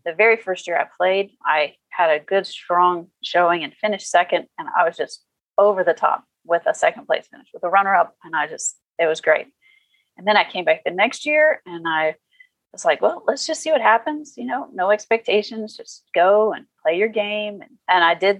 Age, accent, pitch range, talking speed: 30-49, American, 165-210 Hz, 220 wpm